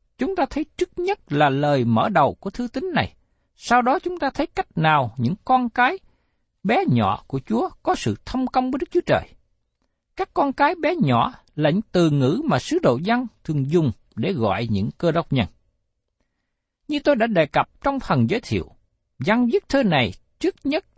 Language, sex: Vietnamese, male